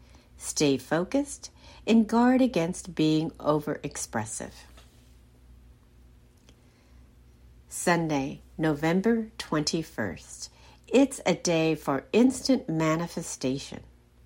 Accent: American